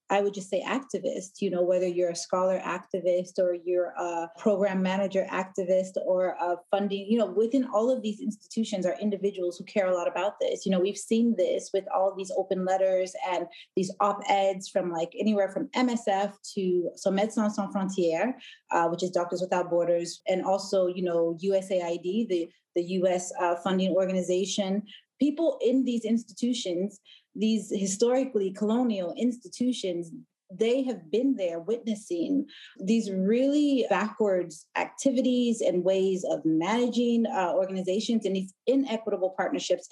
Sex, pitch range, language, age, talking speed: female, 185-220 Hz, English, 30-49, 155 wpm